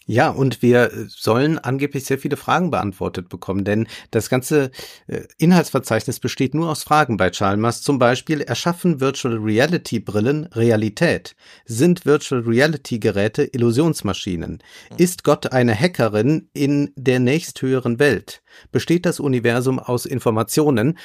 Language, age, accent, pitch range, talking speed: German, 50-69, German, 110-140 Hz, 130 wpm